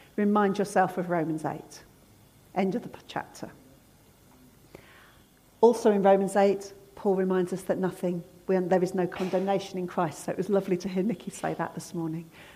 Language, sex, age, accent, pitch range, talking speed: English, female, 40-59, British, 195-290 Hz, 165 wpm